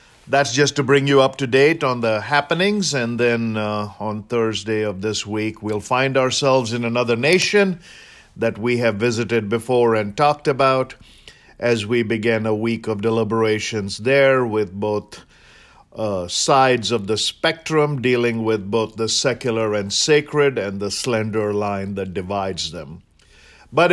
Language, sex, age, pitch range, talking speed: English, male, 50-69, 115-140 Hz, 160 wpm